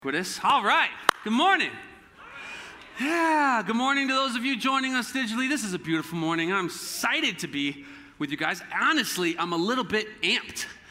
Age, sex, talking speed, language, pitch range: 30-49, male, 175 wpm, English, 185-255 Hz